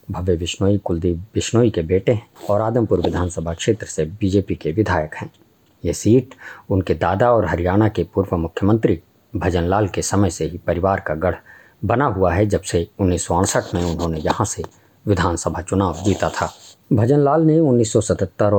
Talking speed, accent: 160 wpm, Indian